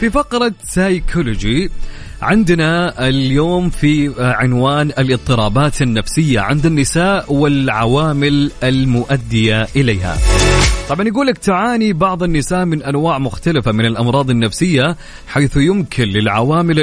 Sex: male